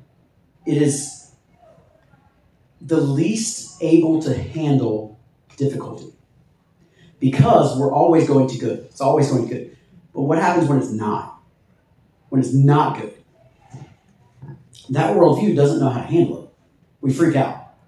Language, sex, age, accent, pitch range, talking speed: English, male, 30-49, American, 125-155 Hz, 135 wpm